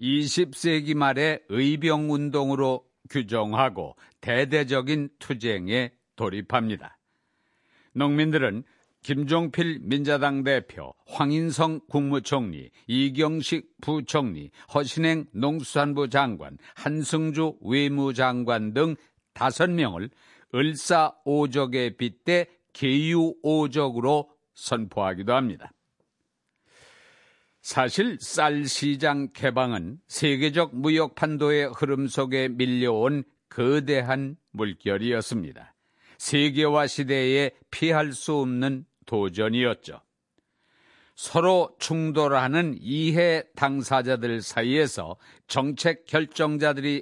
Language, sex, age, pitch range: Korean, male, 60-79, 130-155 Hz